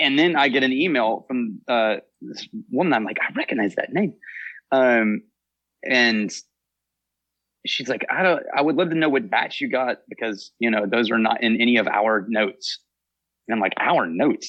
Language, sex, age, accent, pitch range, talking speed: English, male, 30-49, American, 110-155 Hz, 195 wpm